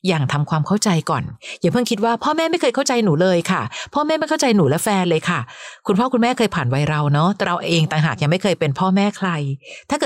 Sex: female